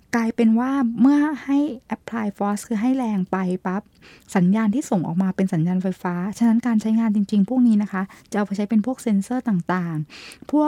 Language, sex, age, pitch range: Thai, female, 20-39, 190-230 Hz